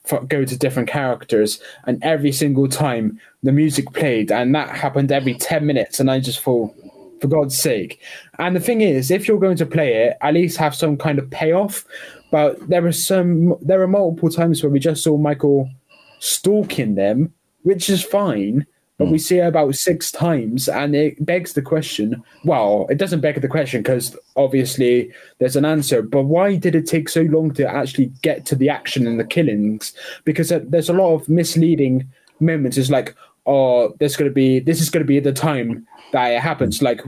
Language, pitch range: English, 130-165 Hz